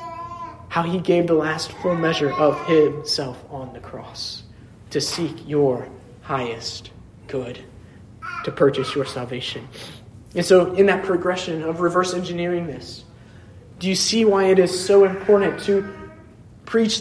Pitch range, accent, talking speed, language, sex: 135-205 Hz, American, 140 wpm, English, male